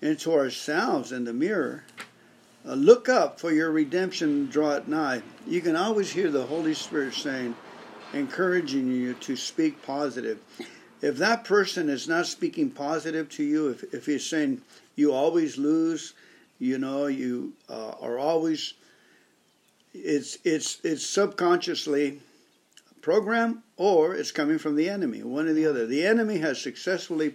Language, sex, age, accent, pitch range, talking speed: English, male, 50-69, American, 145-230 Hz, 150 wpm